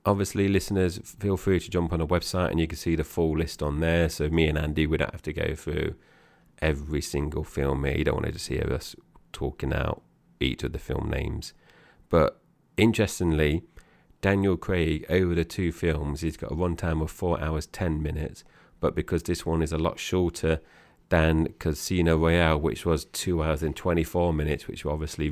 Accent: British